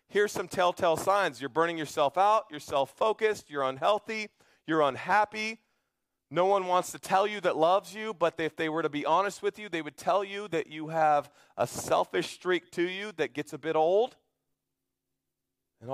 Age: 40-59